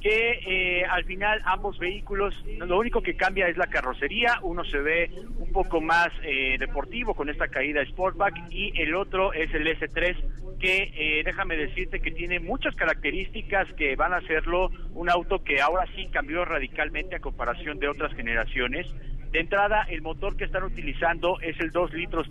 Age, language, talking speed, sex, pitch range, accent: 50-69, Spanish, 180 wpm, male, 145-185 Hz, Mexican